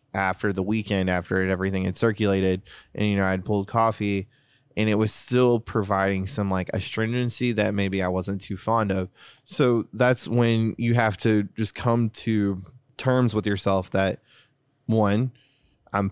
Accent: American